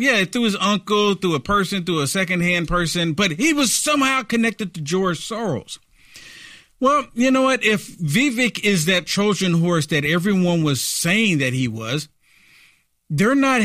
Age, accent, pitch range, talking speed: 50-69, American, 160-220 Hz, 165 wpm